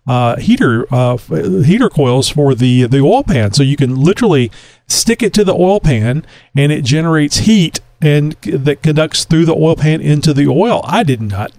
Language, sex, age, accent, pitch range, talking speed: English, male, 40-59, American, 125-155 Hz, 190 wpm